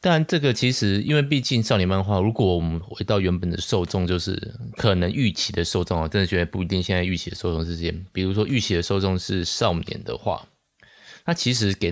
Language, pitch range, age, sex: Chinese, 90-110 Hz, 20-39, male